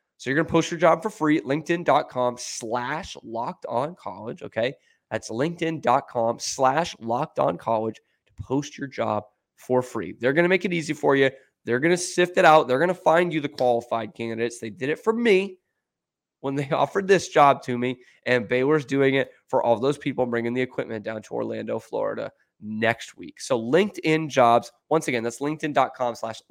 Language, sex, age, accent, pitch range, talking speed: English, male, 20-39, American, 115-155 Hz, 195 wpm